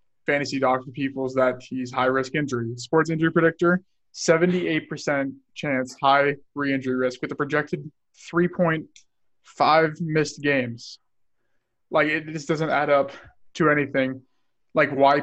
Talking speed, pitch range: 125 wpm, 130-155 Hz